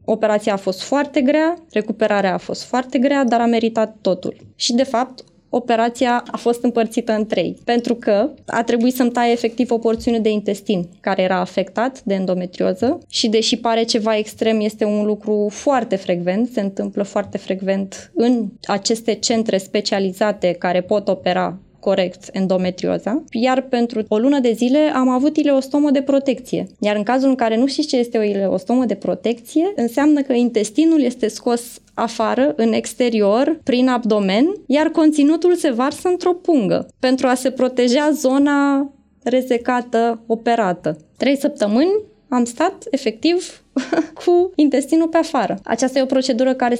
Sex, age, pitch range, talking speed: female, 20-39, 215-270 Hz, 160 wpm